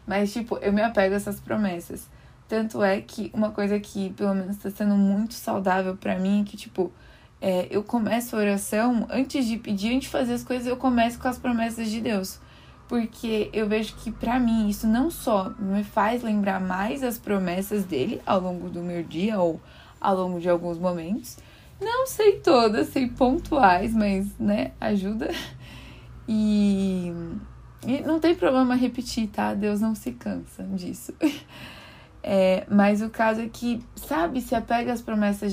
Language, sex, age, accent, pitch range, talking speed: Portuguese, female, 20-39, Brazilian, 195-235 Hz, 175 wpm